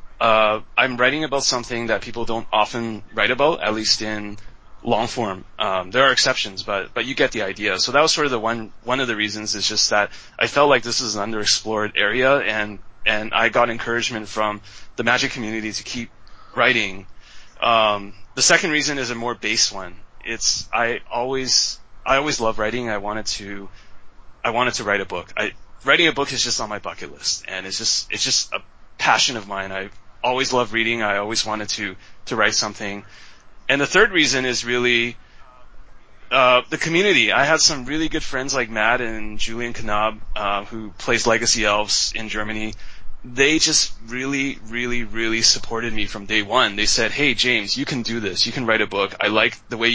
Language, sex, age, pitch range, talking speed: English, male, 30-49, 105-120 Hz, 205 wpm